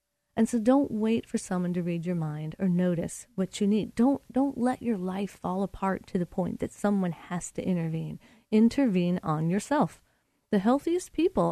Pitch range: 175-220 Hz